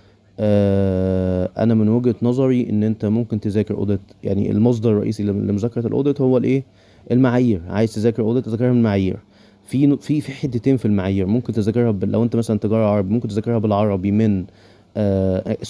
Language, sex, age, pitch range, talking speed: Arabic, male, 20-39, 100-120 Hz, 155 wpm